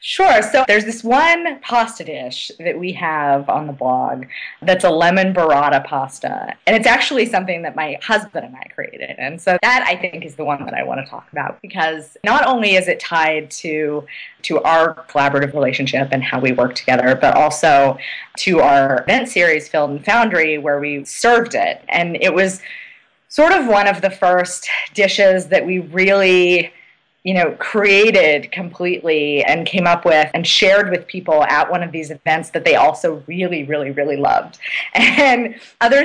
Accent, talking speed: American, 185 wpm